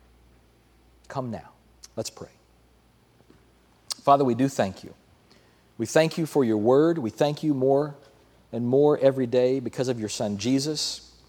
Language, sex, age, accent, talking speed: English, male, 40-59, American, 150 wpm